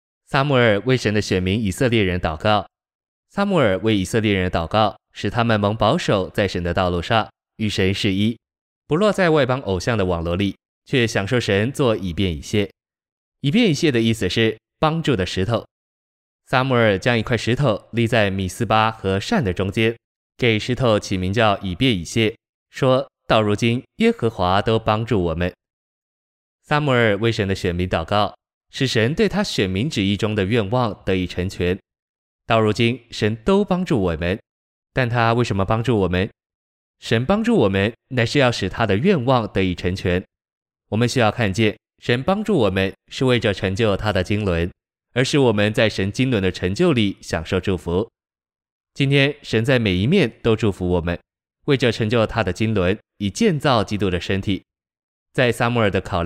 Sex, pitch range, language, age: male, 95-120 Hz, Chinese, 20-39